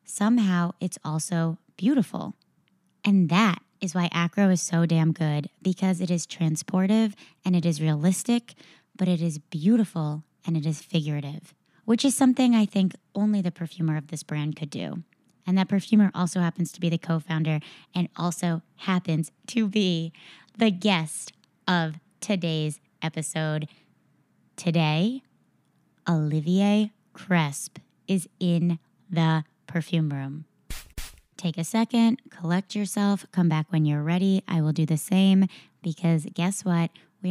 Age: 20-39